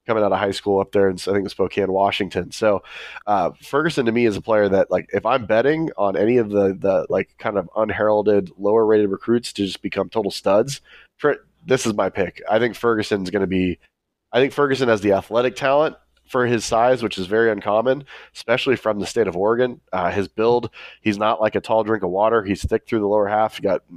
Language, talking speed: English, 230 wpm